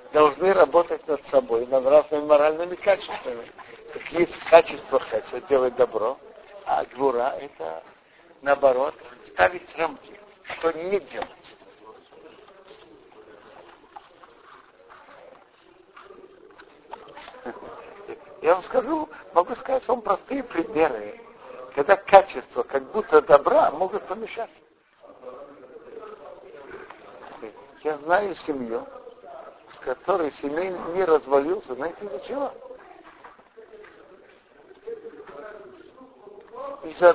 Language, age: Russian, 60-79